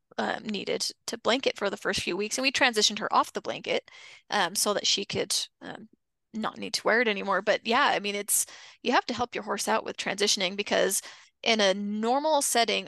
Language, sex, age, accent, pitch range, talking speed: English, female, 20-39, American, 205-255 Hz, 220 wpm